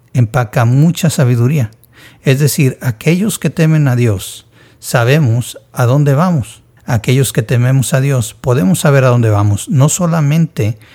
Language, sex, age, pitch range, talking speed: Spanish, male, 50-69, 115-140 Hz, 140 wpm